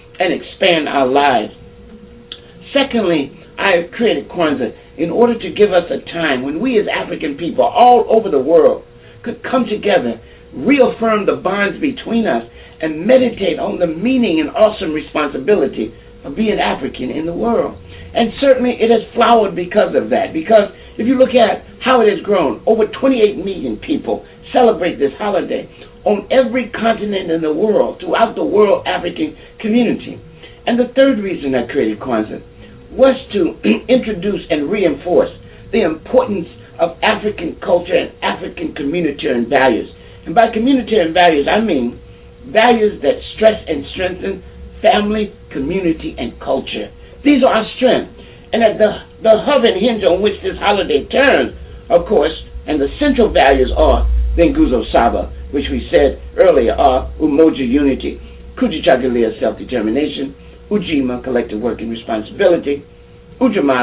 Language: English